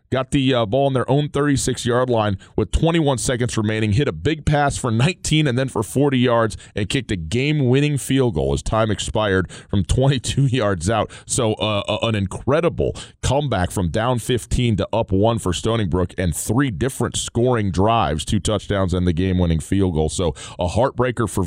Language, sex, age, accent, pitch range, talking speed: English, male, 30-49, American, 95-125 Hz, 200 wpm